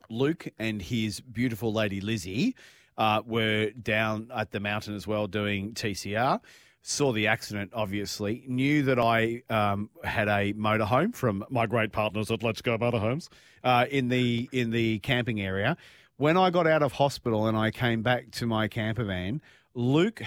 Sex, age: male, 40-59